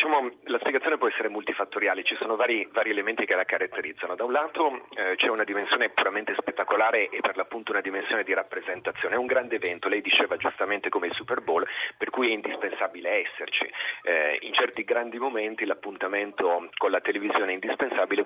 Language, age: Italian, 40-59